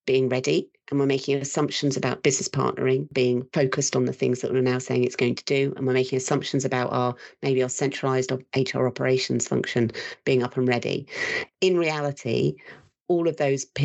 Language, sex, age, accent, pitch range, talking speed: English, female, 40-59, British, 125-140 Hz, 185 wpm